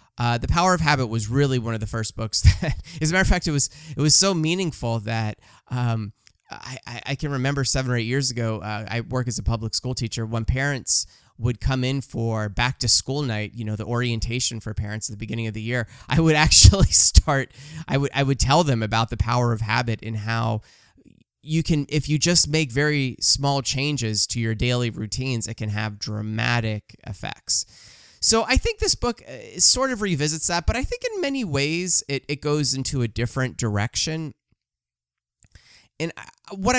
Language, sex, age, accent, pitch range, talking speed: English, male, 20-39, American, 110-145 Hz, 200 wpm